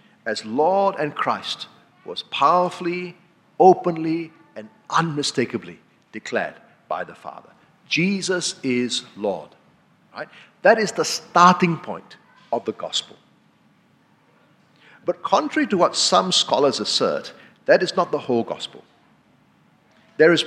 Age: 50-69